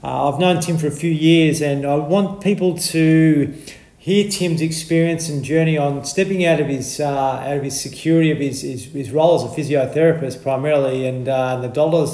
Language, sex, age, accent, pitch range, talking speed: English, male, 40-59, Australian, 135-155 Hz, 205 wpm